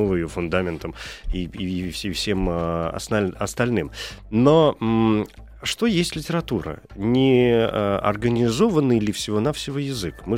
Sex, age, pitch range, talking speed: male, 30-49, 85-120 Hz, 85 wpm